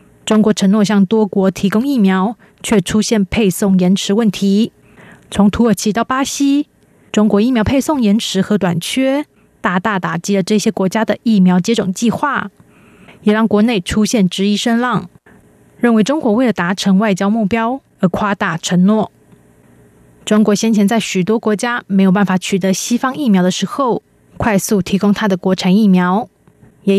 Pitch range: 190-225 Hz